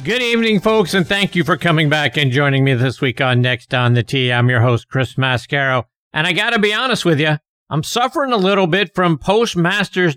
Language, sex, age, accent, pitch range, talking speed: English, male, 50-69, American, 125-180 Hz, 230 wpm